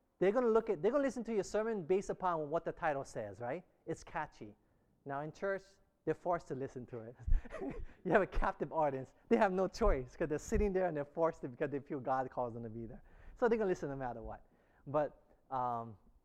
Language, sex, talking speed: English, male, 235 wpm